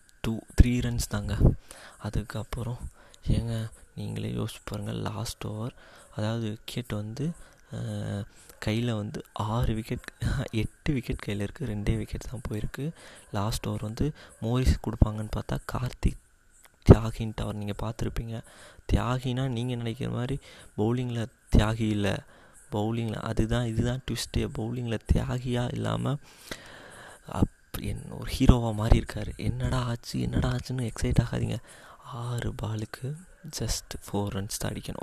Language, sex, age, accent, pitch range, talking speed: Tamil, male, 20-39, native, 105-120 Hz, 120 wpm